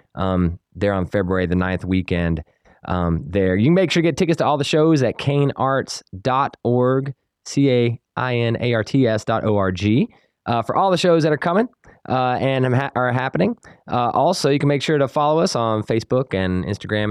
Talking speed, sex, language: 205 wpm, male, English